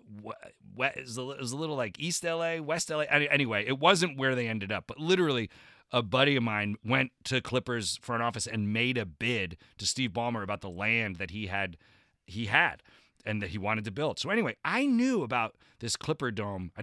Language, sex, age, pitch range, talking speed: English, male, 30-49, 100-130 Hz, 230 wpm